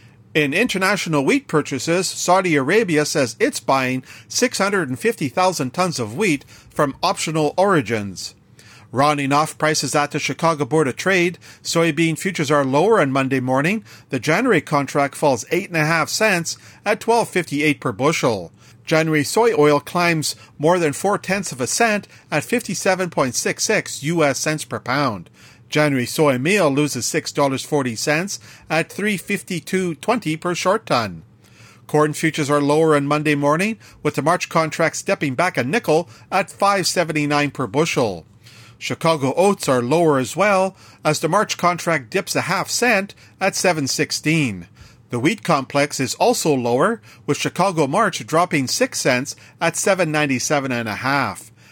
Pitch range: 130-175 Hz